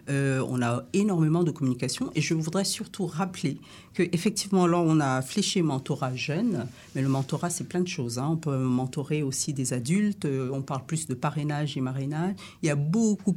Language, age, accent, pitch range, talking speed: French, 50-69, French, 140-180 Hz, 195 wpm